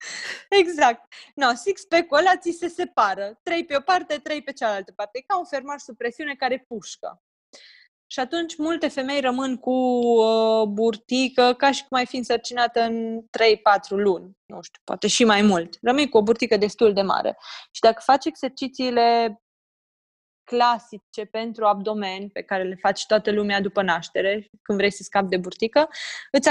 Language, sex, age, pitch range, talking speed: Romanian, female, 20-39, 205-275 Hz, 165 wpm